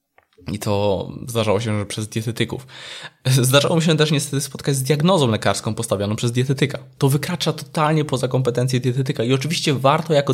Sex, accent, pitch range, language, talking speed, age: male, native, 115-145 Hz, Polish, 170 wpm, 20-39